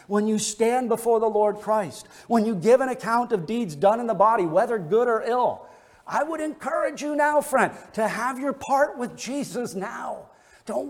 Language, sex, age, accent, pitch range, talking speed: English, male, 50-69, American, 210-270 Hz, 200 wpm